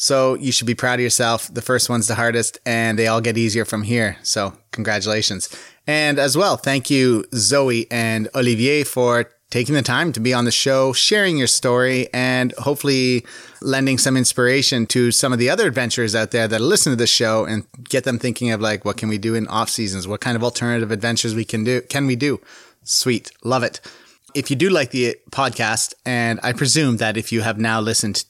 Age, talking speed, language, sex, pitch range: 30-49, 215 wpm, English, male, 115-135 Hz